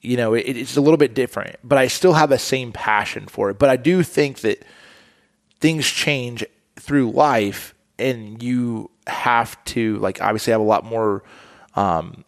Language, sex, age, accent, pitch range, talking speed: English, male, 20-39, American, 110-135 Hz, 185 wpm